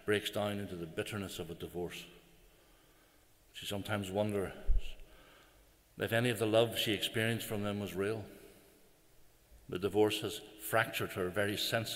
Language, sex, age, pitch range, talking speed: English, male, 60-79, 105-150 Hz, 145 wpm